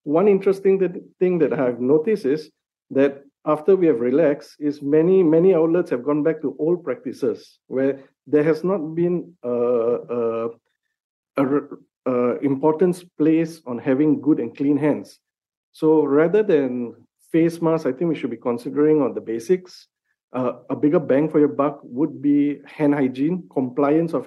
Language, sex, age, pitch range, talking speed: English, male, 50-69, 135-165 Hz, 165 wpm